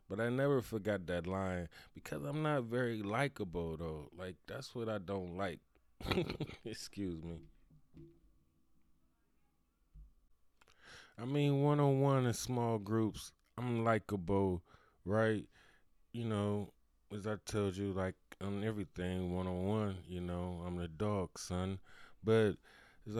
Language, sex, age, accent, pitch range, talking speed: English, male, 20-39, American, 90-110 Hz, 130 wpm